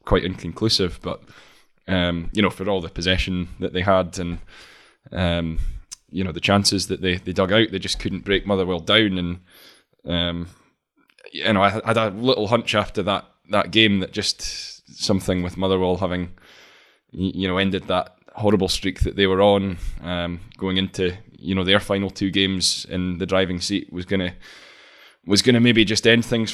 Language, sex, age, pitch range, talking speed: English, male, 10-29, 90-105 Hz, 185 wpm